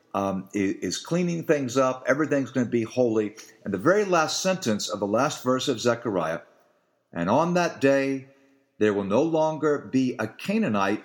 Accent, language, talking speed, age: American, English, 175 wpm, 50-69